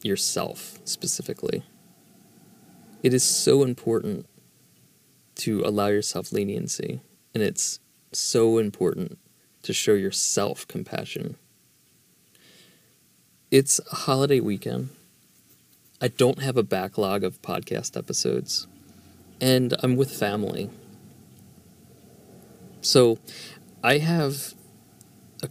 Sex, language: male, English